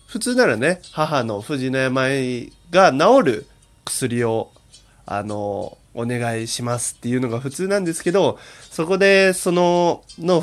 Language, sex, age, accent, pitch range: Japanese, male, 20-39, native, 115-165 Hz